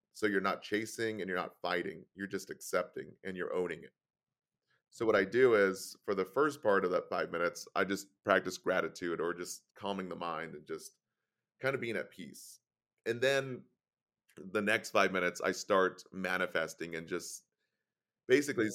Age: 30-49